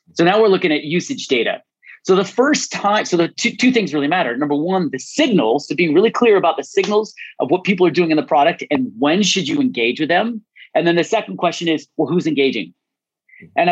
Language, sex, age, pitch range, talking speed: English, male, 30-49, 145-195 Hz, 235 wpm